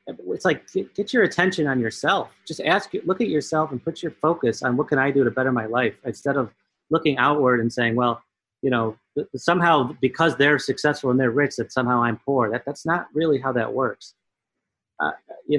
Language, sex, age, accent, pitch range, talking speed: English, male, 30-49, American, 115-140 Hz, 210 wpm